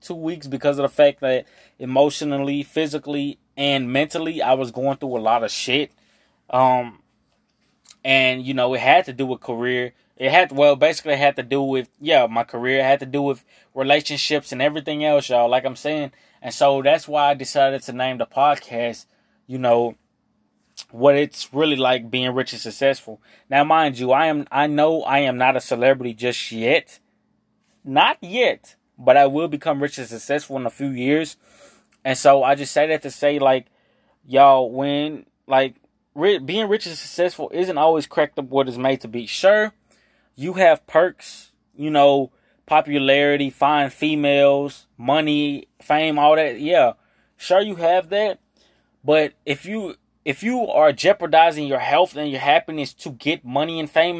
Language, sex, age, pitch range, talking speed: English, male, 20-39, 130-155 Hz, 180 wpm